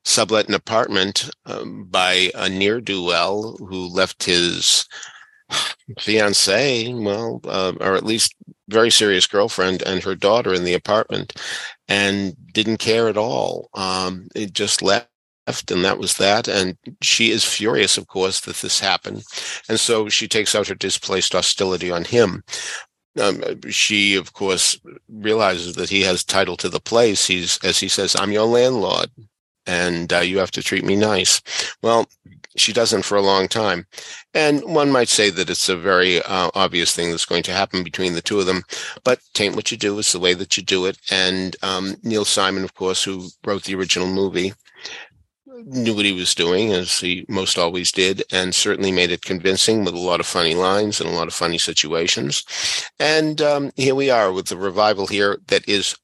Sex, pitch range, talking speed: male, 90-110 Hz, 185 wpm